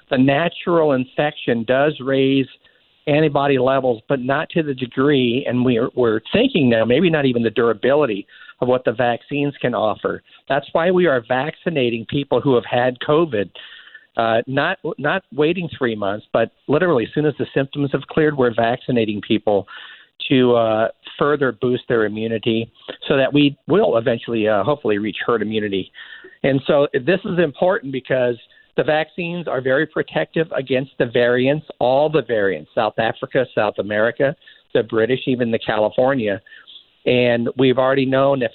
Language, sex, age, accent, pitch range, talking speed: English, male, 50-69, American, 120-150 Hz, 160 wpm